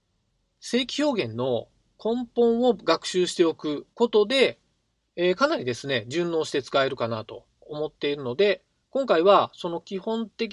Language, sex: Japanese, male